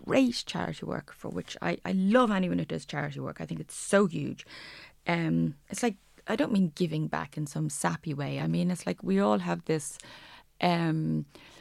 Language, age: English, 30-49